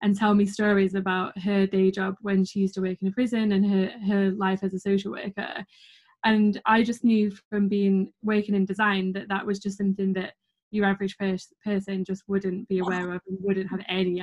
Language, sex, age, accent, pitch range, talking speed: English, female, 20-39, British, 190-205 Hz, 220 wpm